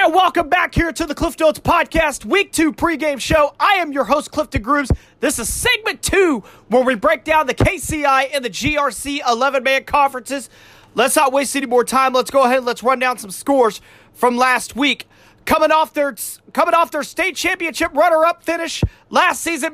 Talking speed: 190 wpm